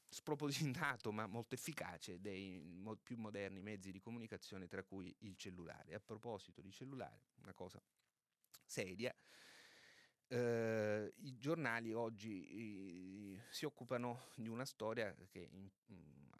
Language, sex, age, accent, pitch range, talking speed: Italian, male, 30-49, native, 95-120 Hz, 130 wpm